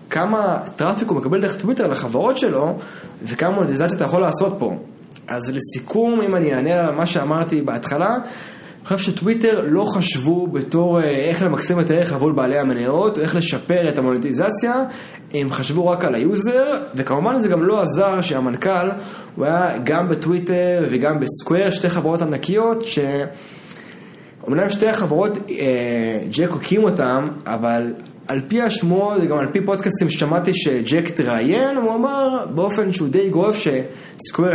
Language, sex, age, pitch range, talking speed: Hebrew, male, 20-39, 150-200 Hz, 150 wpm